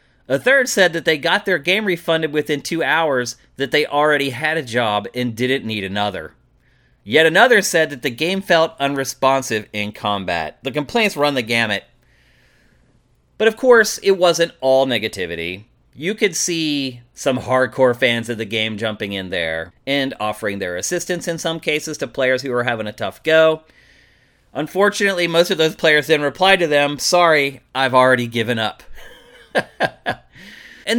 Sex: male